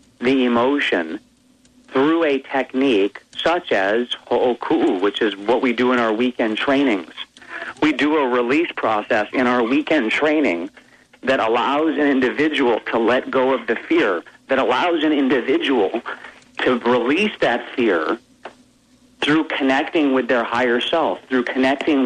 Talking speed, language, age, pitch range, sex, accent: 140 wpm, English, 40-59, 120-150 Hz, male, American